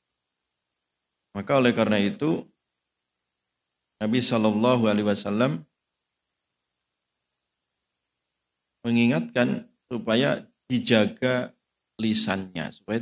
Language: Indonesian